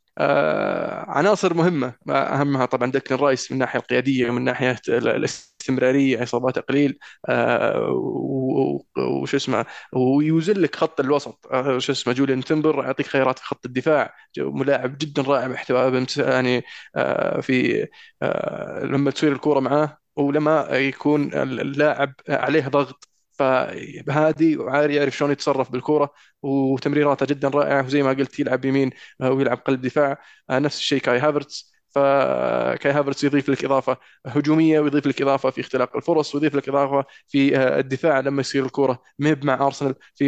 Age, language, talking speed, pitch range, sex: 20-39, Arabic, 140 wpm, 130-145 Hz, male